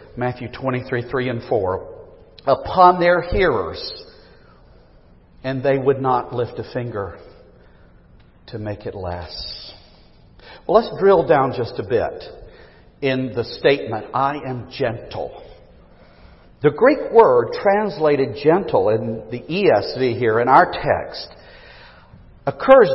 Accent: American